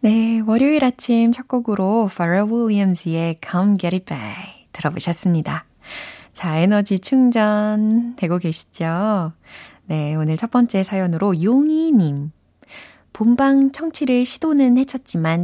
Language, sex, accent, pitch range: Korean, female, native, 160-225 Hz